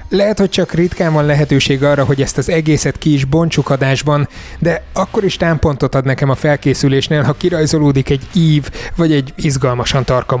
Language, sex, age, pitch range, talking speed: Hungarian, male, 20-39, 125-150 Hz, 175 wpm